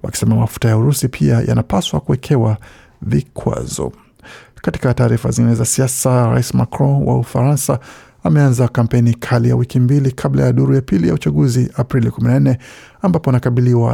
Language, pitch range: Swahili, 115-135 Hz